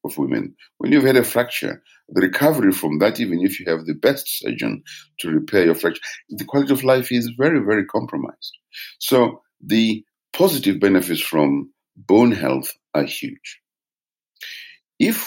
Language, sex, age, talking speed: English, male, 60-79, 155 wpm